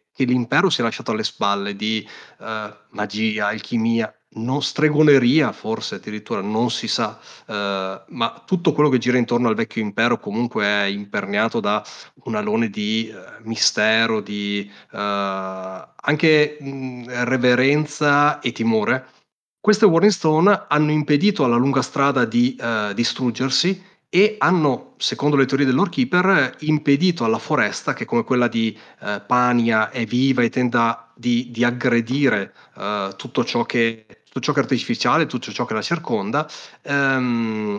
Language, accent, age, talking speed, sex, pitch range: Italian, native, 30-49, 145 wpm, male, 115-150 Hz